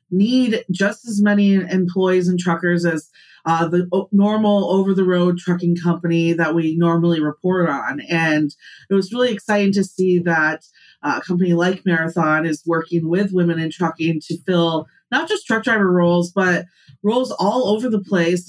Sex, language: female, English